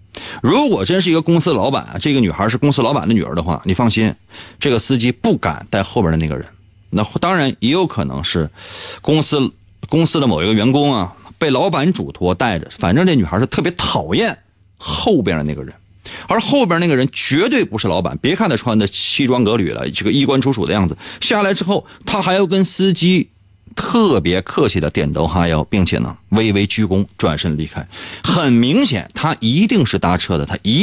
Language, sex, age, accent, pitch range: Chinese, male, 30-49, native, 95-140 Hz